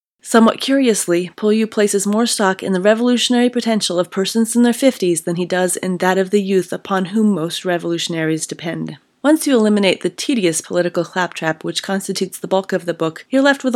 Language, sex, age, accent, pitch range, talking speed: English, female, 30-49, American, 180-240 Hz, 195 wpm